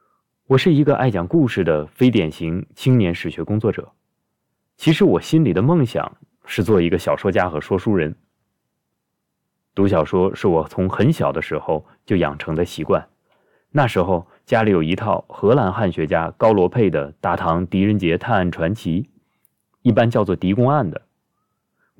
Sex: male